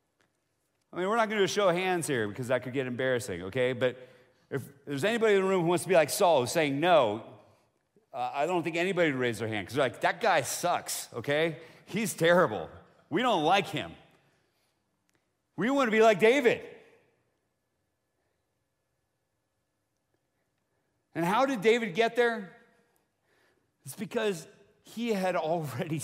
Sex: male